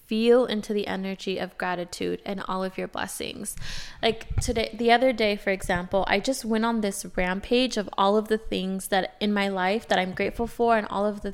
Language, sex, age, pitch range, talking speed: English, female, 20-39, 195-240 Hz, 215 wpm